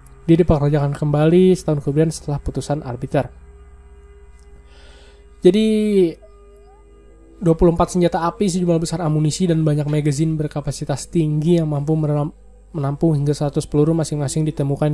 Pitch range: 135-170 Hz